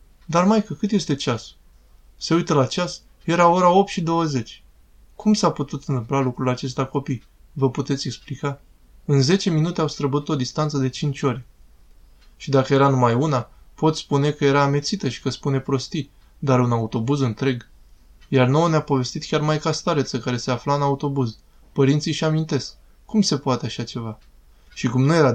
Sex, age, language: male, 20-39, Romanian